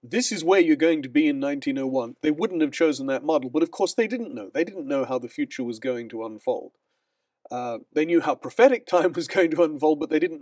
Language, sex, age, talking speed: English, male, 40-59, 255 wpm